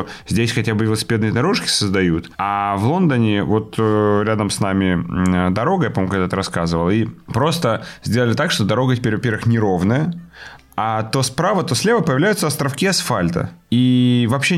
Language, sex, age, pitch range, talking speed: Ukrainian, male, 30-49, 100-140 Hz, 150 wpm